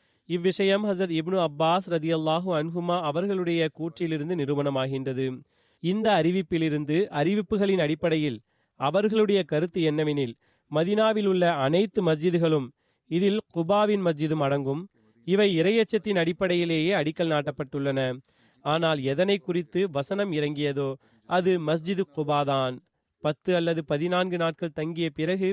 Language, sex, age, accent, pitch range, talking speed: Tamil, male, 30-49, native, 150-185 Hz, 105 wpm